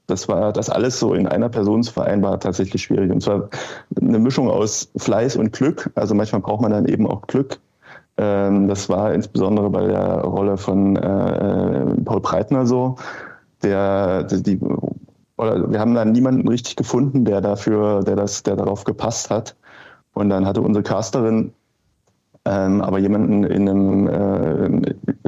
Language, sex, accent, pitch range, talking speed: German, male, German, 95-105 Hz, 155 wpm